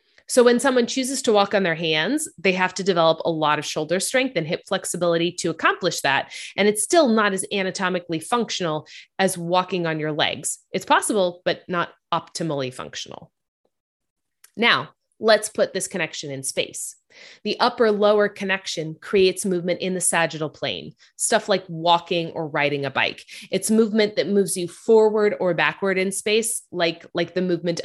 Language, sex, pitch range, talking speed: English, female, 165-200 Hz, 170 wpm